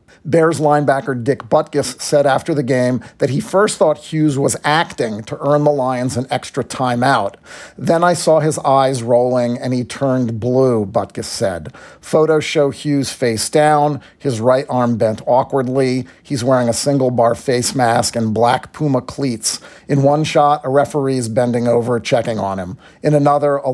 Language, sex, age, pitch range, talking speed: English, male, 40-59, 120-145 Hz, 175 wpm